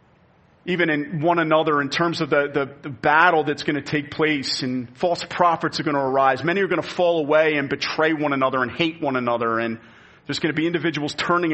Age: 40-59